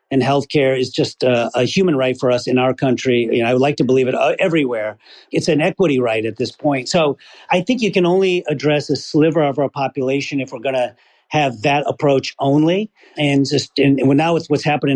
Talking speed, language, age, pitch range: 230 wpm, English, 40-59, 130-155 Hz